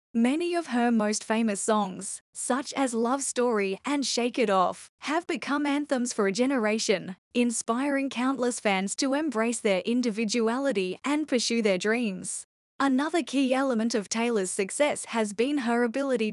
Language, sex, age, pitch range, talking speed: English, female, 10-29, 220-270 Hz, 150 wpm